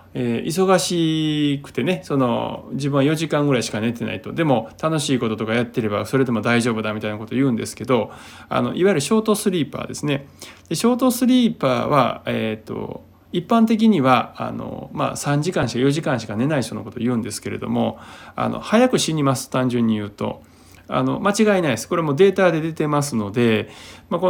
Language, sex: Japanese, male